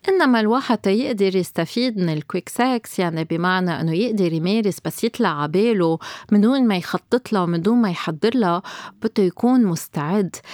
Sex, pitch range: female, 170-220 Hz